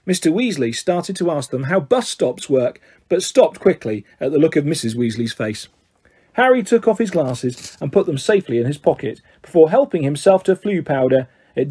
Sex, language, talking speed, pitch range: male, English, 200 wpm, 125-190 Hz